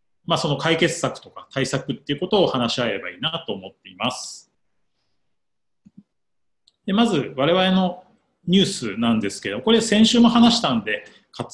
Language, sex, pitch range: Japanese, male, 130-205 Hz